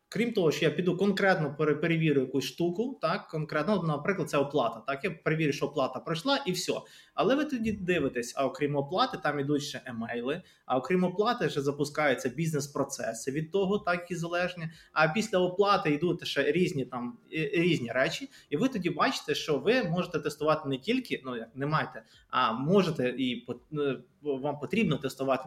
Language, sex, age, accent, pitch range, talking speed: Ukrainian, male, 20-39, native, 135-185 Hz, 185 wpm